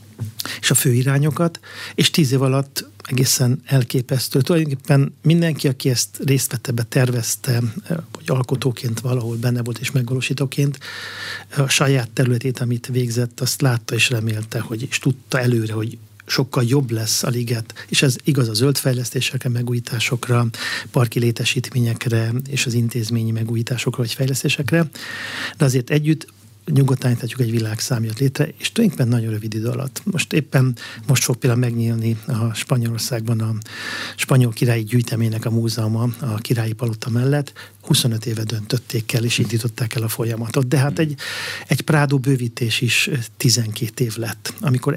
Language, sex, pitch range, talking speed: Hungarian, male, 115-140 Hz, 145 wpm